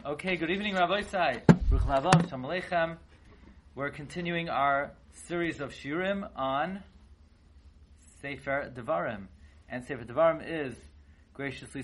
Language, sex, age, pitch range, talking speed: English, male, 30-49, 120-160 Hz, 100 wpm